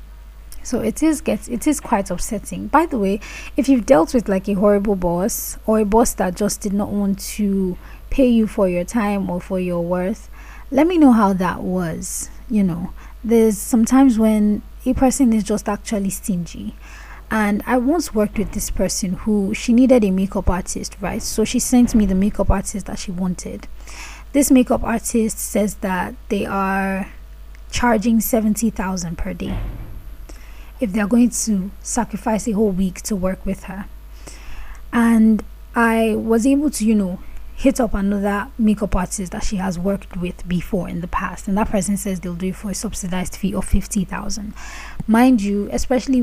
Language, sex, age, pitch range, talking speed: English, female, 20-39, 190-225 Hz, 180 wpm